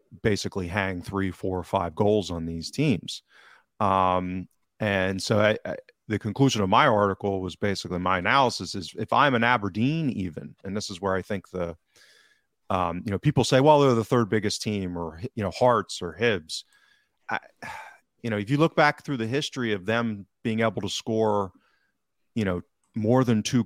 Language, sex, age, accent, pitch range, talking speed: English, male, 30-49, American, 95-115 Hz, 190 wpm